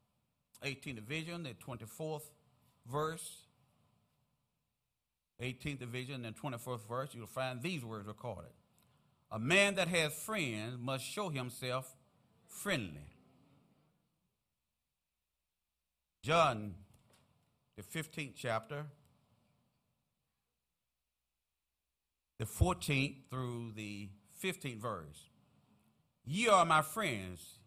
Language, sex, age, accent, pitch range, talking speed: English, male, 50-69, American, 110-150 Hz, 80 wpm